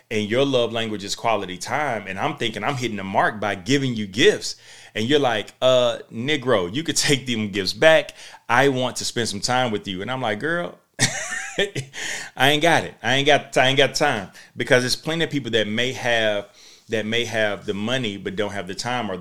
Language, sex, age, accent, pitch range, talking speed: English, male, 30-49, American, 100-120 Hz, 225 wpm